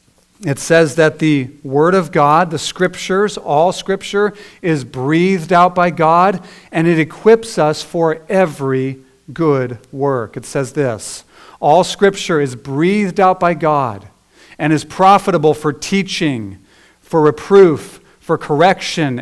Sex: male